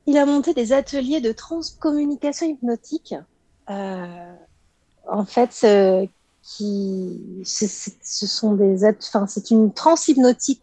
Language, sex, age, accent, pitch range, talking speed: French, female, 40-59, French, 190-240 Hz, 125 wpm